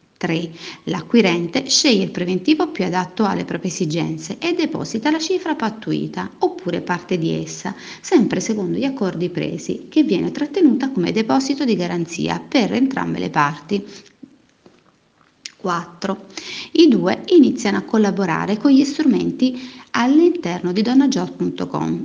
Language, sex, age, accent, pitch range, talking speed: Italian, female, 40-59, native, 175-270 Hz, 130 wpm